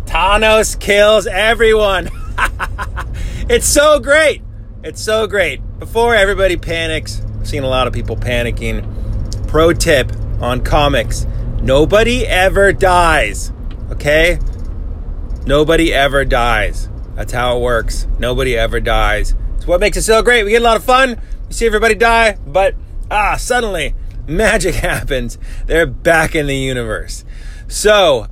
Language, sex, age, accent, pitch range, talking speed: English, male, 30-49, American, 115-185 Hz, 135 wpm